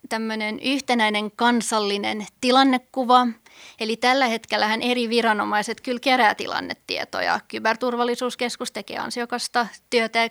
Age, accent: 30-49, native